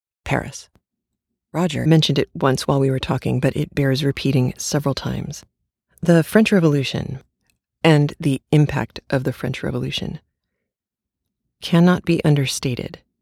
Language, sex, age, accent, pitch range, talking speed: English, female, 40-59, American, 130-155 Hz, 125 wpm